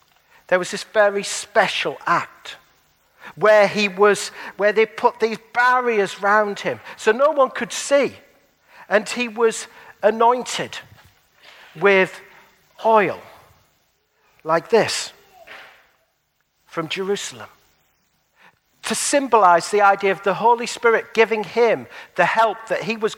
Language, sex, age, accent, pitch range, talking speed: English, male, 50-69, British, 185-235 Hz, 120 wpm